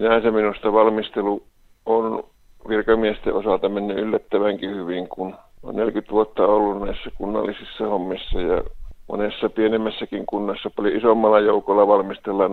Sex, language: male, Finnish